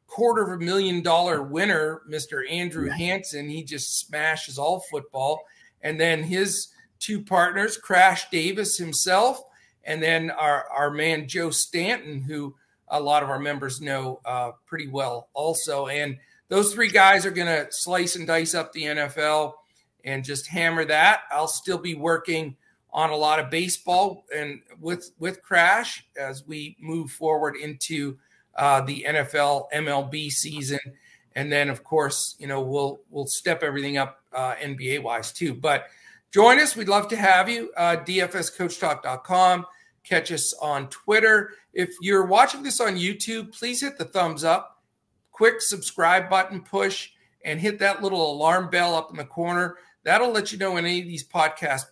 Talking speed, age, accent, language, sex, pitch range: 165 wpm, 40-59, American, English, male, 145-185 Hz